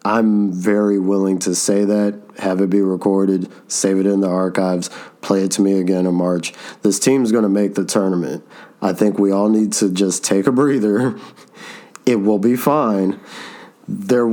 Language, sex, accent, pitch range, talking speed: English, male, American, 100-120 Hz, 180 wpm